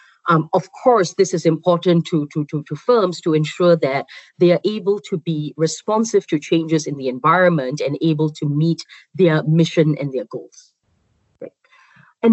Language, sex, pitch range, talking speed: English, female, 150-180 Hz, 170 wpm